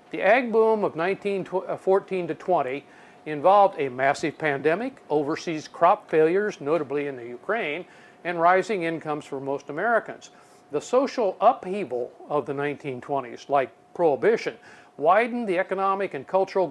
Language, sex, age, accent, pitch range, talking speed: English, male, 50-69, American, 145-195 Hz, 135 wpm